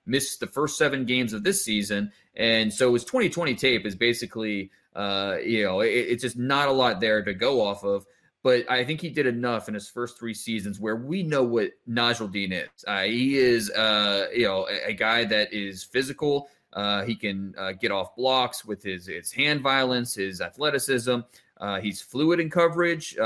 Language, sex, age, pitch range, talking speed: English, male, 20-39, 105-135 Hz, 195 wpm